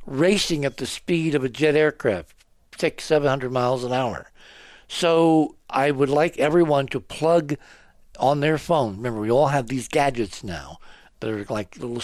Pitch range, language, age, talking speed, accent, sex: 115-155 Hz, English, 60-79, 170 wpm, American, male